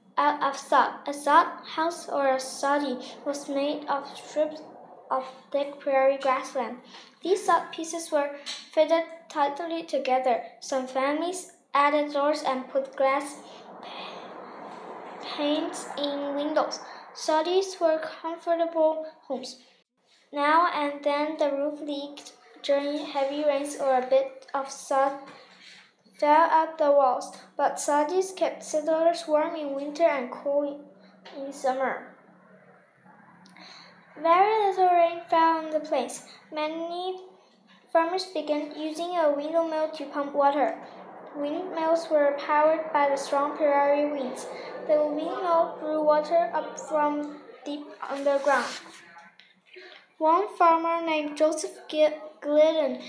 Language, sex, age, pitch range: Chinese, female, 10-29, 280-320 Hz